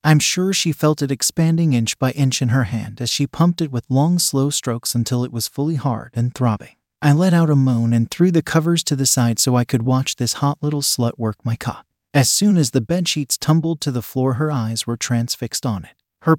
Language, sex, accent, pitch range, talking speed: English, male, American, 120-155 Hz, 240 wpm